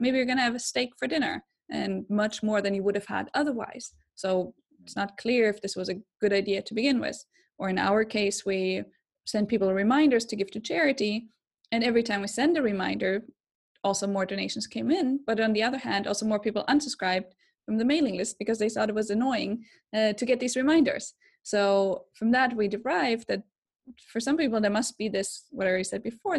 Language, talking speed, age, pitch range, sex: English, 220 wpm, 20-39, 205-250 Hz, female